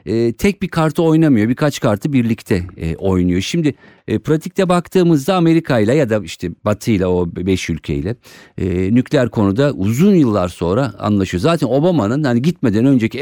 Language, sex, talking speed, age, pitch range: Turkish, male, 150 wpm, 50-69, 105-155 Hz